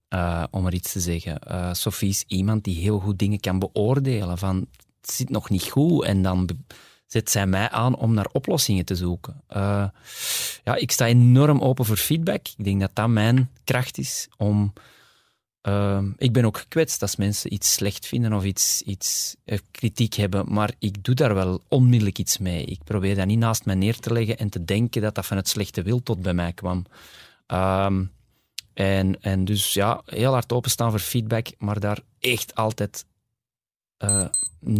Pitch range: 95-115 Hz